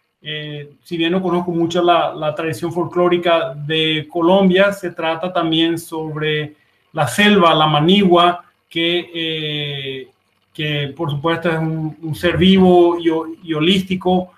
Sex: male